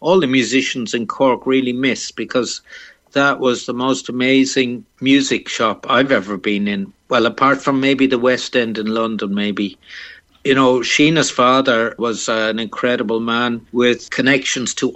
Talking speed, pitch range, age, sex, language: 165 wpm, 110-135 Hz, 60-79, male, English